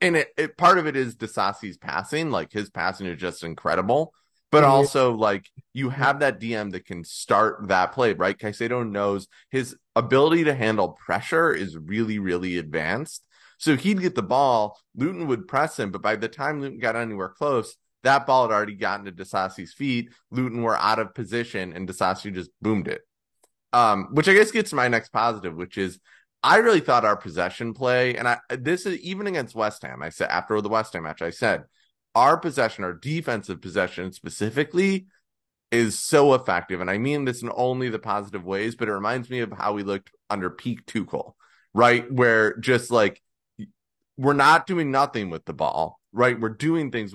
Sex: male